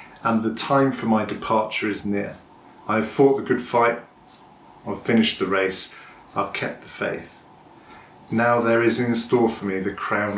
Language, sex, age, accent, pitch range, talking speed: English, male, 40-59, British, 105-140 Hz, 180 wpm